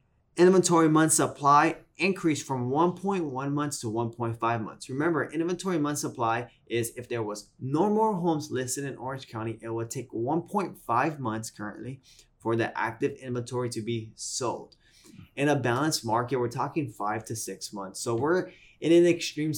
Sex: male